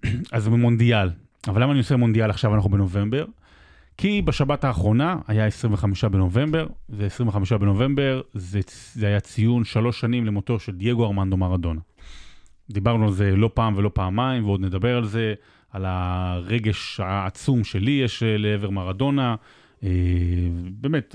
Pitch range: 100-130 Hz